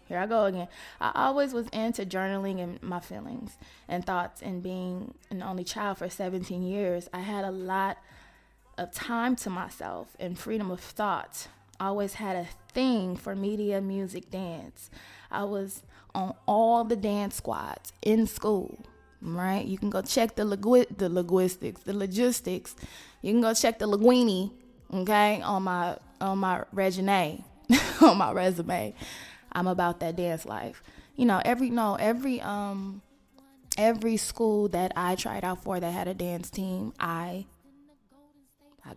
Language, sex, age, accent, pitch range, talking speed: English, female, 20-39, American, 185-225 Hz, 160 wpm